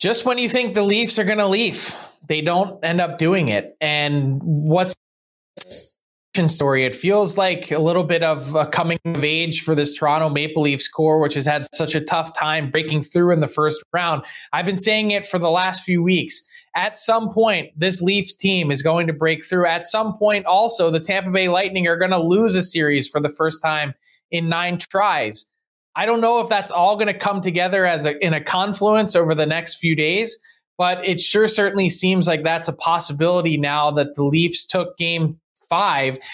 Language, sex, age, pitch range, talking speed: English, male, 20-39, 160-200 Hz, 210 wpm